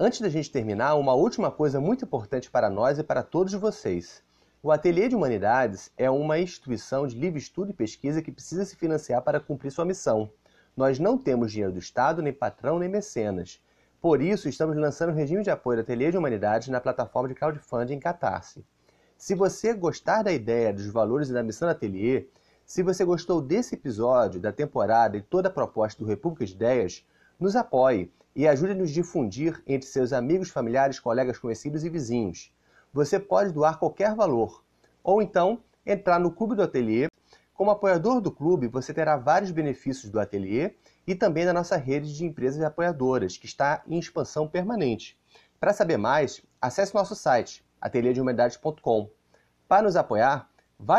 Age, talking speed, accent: 30-49, 180 wpm, Brazilian